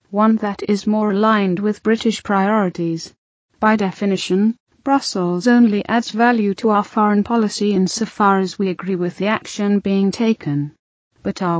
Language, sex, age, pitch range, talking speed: English, female, 30-49, 190-220 Hz, 150 wpm